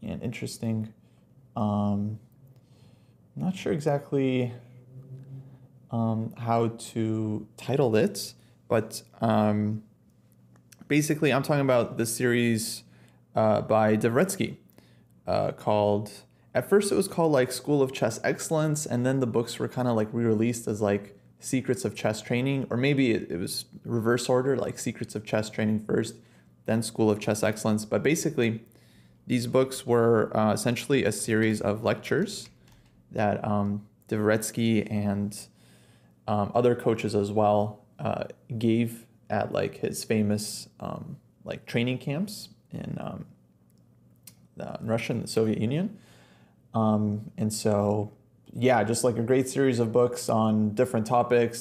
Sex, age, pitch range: male, 20-39, 105-125 Hz